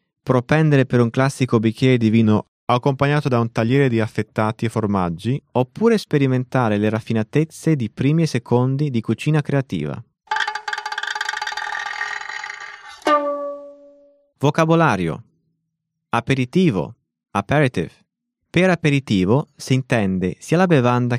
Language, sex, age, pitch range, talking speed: English, male, 20-39, 115-155 Hz, 100 wpm